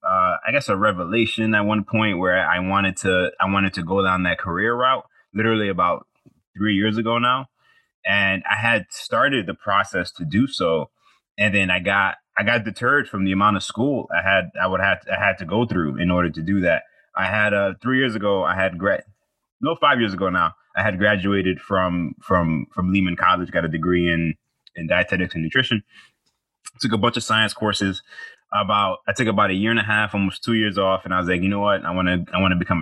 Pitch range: 90-110 Hz